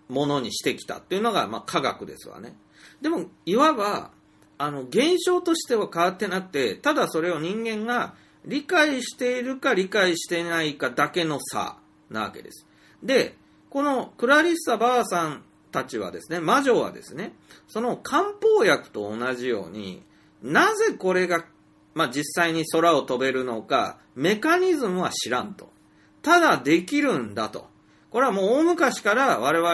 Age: 40-59